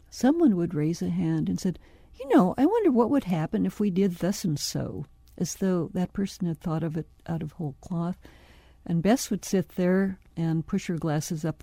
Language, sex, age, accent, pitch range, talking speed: English, female, 60-79, American, 160-200 Hz, 215 wpm